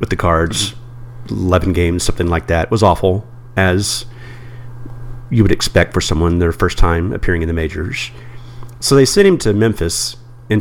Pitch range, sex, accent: 90-120 Hz, male, American